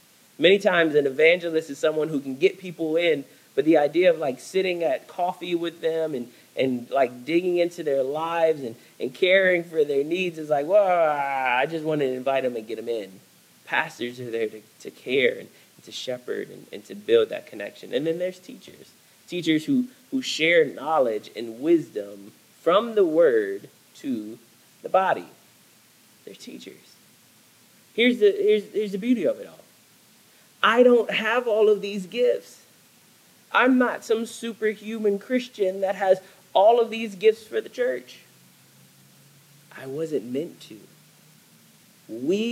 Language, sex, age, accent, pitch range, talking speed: English, male, 20-39, American, 160-250 Hz, 165 wpm